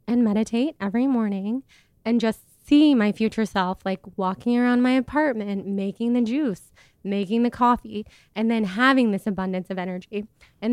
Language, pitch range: English, 200-240 Hz